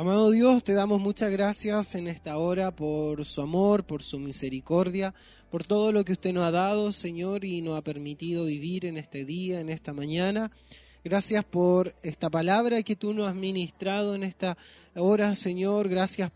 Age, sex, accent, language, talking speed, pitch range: 20-39, male, Argentinian, Spanish, 180 wpm, 175-215 Hz